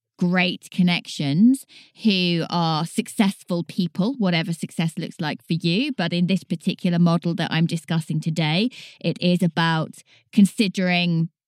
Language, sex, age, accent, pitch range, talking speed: English, female, 20-39, British, 165-215 Hz, 130 wpm